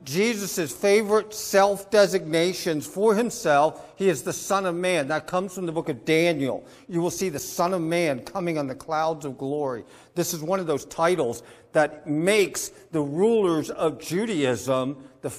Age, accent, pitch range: 50-69, American, 140-190 Hz